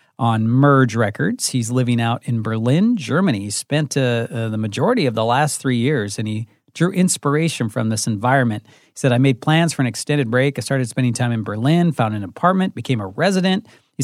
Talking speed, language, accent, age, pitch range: 210 wpm, English, American, 40-59, 115-150 Hz